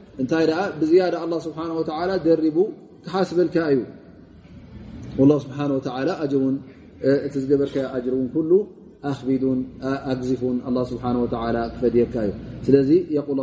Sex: male